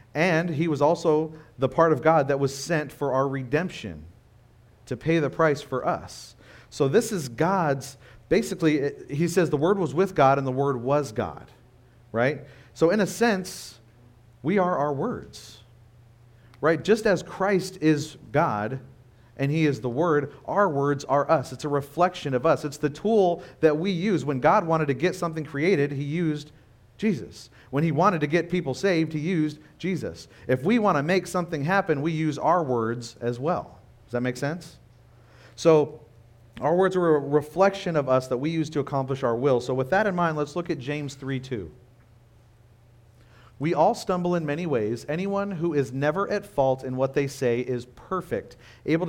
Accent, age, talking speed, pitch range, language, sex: American, 40-59, 185 wpm, 125-170 Hz, English, male